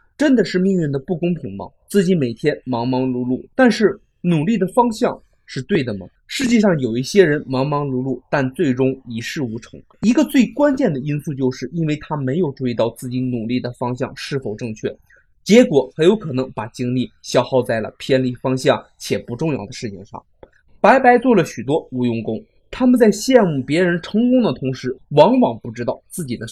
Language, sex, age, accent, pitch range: Chinese, male, 20-39, native, 125-195 Hz